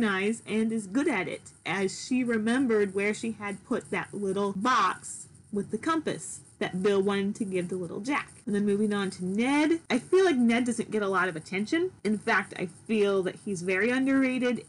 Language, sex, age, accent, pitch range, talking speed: English, female, 30-49, American, 195-235 Hz, 205 wpm